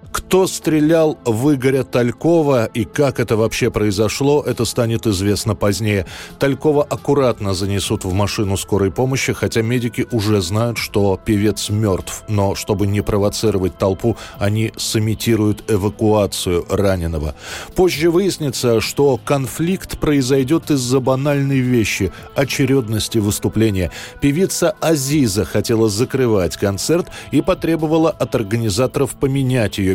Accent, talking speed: native, 115 wpm